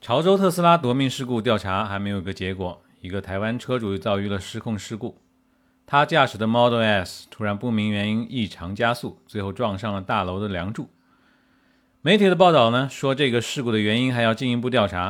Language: Chinese